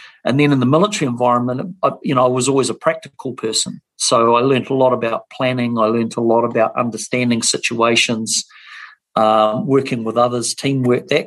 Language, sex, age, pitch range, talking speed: English, male, 40-59, 120-135 Hz, 180 wpm